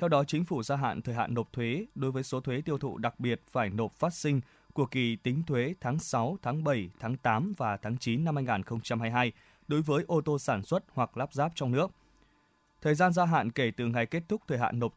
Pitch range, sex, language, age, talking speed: 115-145 Hz, male, Vietnamese, 20-39, 240 wpm